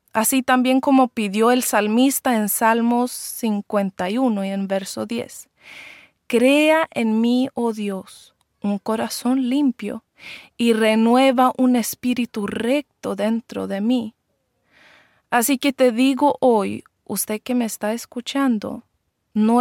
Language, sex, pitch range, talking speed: Swedish, female, 215-285 Hz, 120 wpm